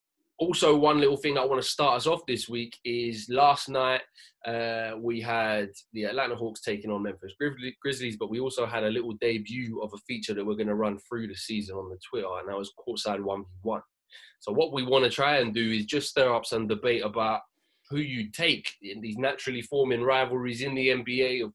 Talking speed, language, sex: 215 wpm, English, male